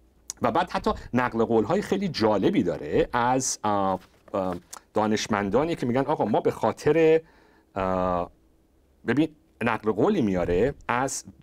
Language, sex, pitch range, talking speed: Persian, male, 95-135 Hz, 110 wpm